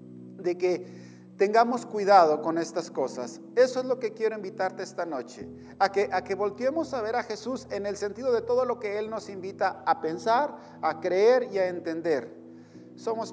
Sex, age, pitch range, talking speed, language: male, 40-59, 185-240 Hz, 190 wpm, Spanish